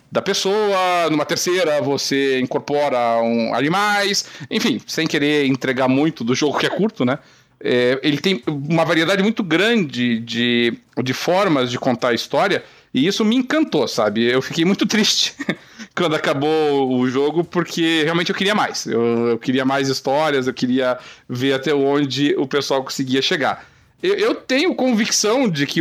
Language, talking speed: Portuguese, 160 wpm